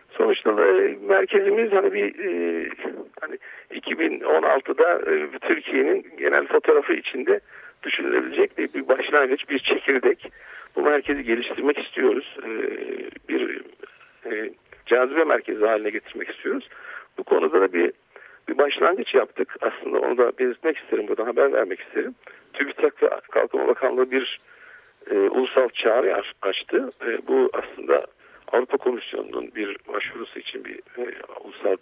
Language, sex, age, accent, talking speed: Turkish, male, 50-69, native, 125 wpm